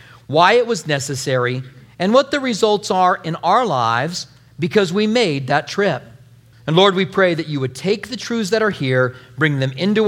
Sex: male